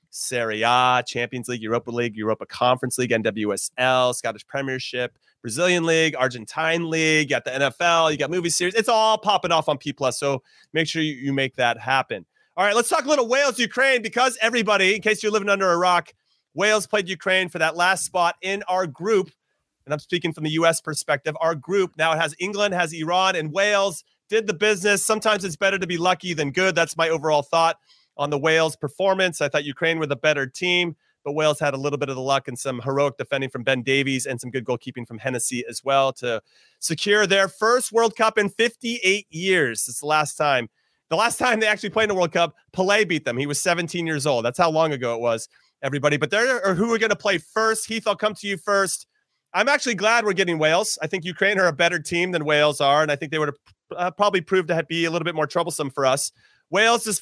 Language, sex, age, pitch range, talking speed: English, male, 30-49, 140-200 Hz, 230 wpm